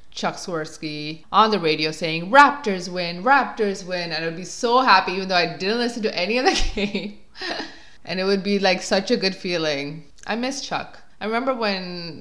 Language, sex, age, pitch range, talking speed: English, female, 20-39, 150-200 Hz, 195 wpm